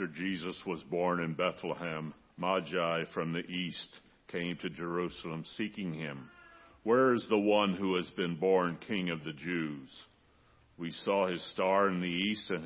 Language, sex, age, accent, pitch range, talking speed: English, male, 60-79, American, 85-105 Hz, 165 wpm